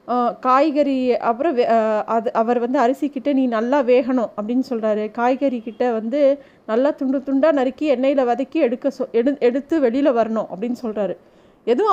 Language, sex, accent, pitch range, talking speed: Tamil, female, native, 235-290 Hz, 145 wpm